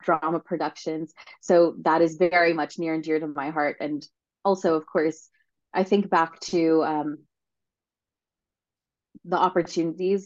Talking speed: 140 wpm